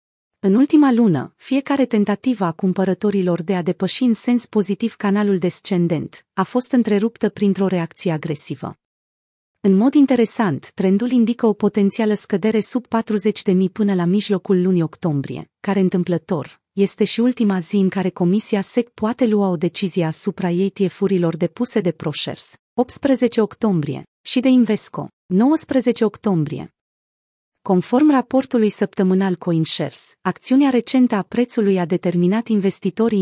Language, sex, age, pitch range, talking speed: Romanian, female, 30-49, 180-225 Hz, 135 wpm